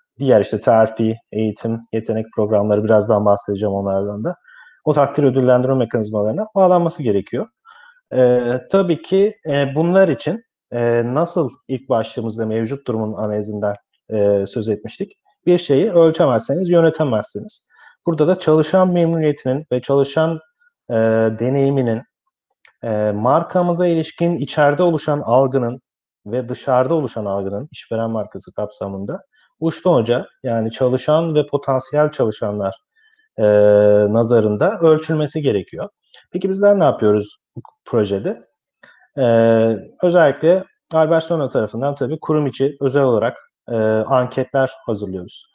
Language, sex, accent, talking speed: Turkish, male, native, 115 wpm